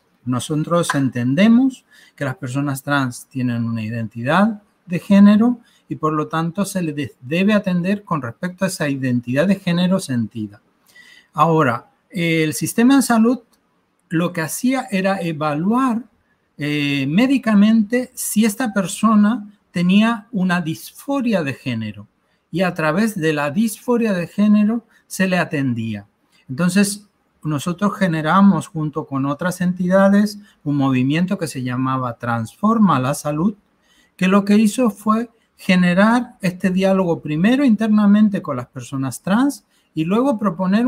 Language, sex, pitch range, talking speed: Spanish, male, 140-205 Hz, 130 wpm